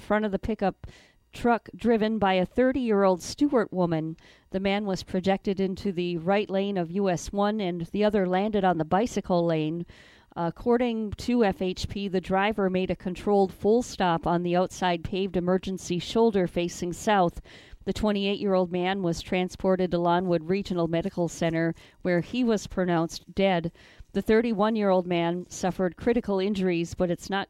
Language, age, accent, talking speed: English, 40-59, American, 160 wpm